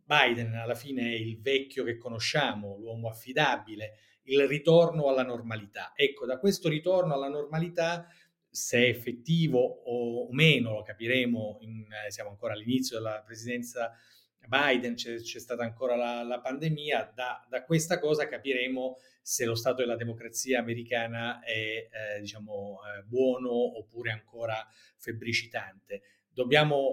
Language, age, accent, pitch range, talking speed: Italian, 30-49, native, 115-135 Hz, 135 wpm